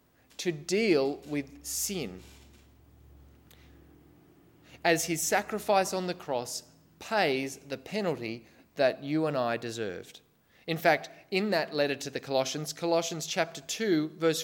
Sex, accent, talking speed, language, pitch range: male, Australian, 125 wpm, English, 130-180 Hz